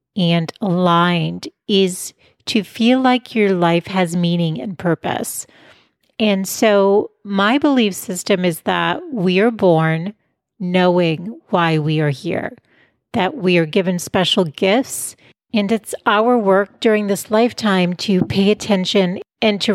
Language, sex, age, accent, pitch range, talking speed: English, female, 40-59, American, 180-215 Hz, 135 wpm